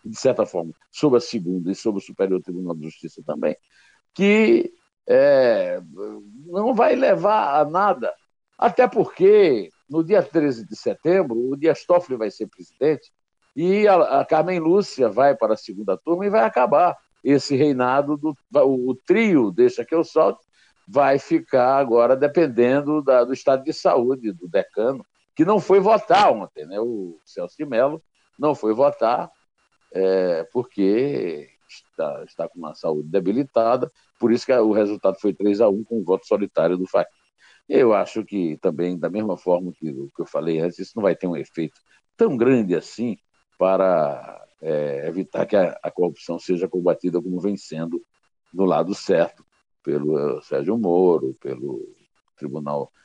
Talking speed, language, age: 160 wpm, Portuguese, 60-79